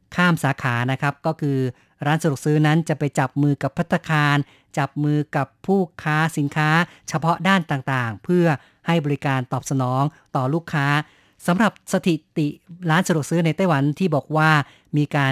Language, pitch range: Thai, 140-165 Hz